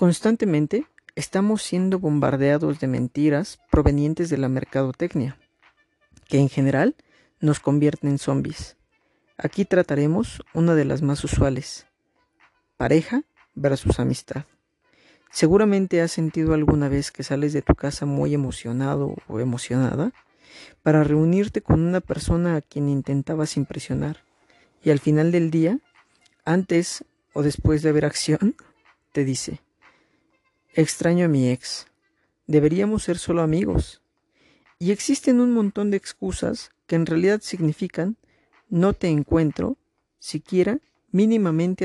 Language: Spanish